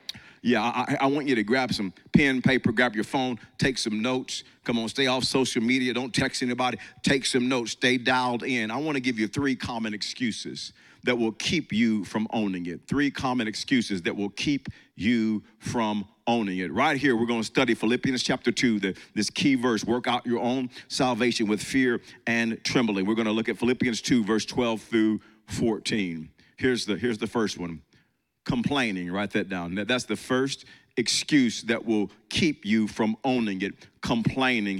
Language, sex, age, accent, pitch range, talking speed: English, male, 50-69, American, 105-130 Hz, 190 wpm